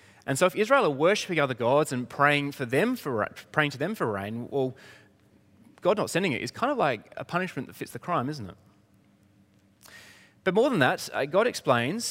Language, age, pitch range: English, 30-49, 105-160 Hz